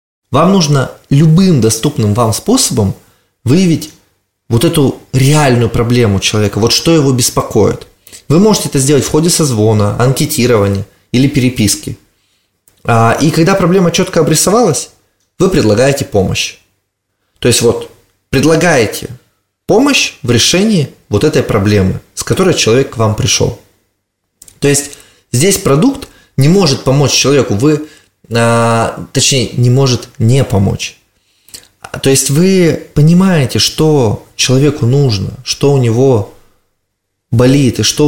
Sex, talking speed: male, 120 wpm